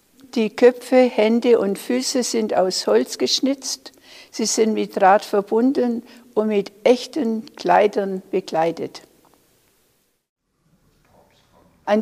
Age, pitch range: 60-79, 200-235 Hz